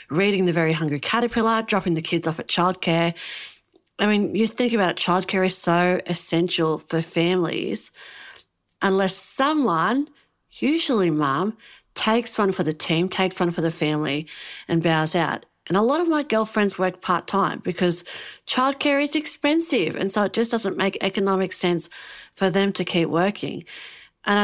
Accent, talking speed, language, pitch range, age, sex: Australian, 160 wpm, English, 165-215 Hz, 40-59, female